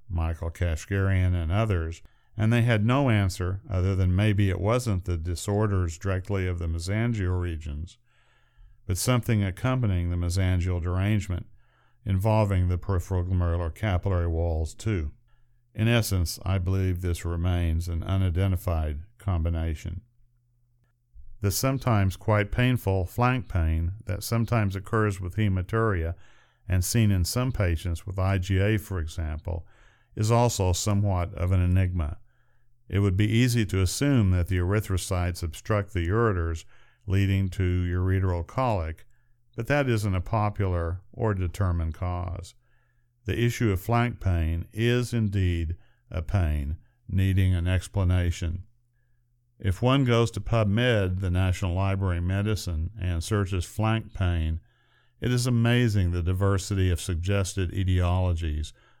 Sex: male